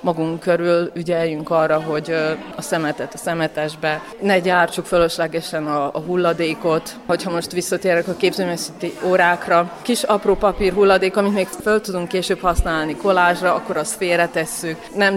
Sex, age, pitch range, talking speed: female, 30-49, 170-210 Hz, 140 wpm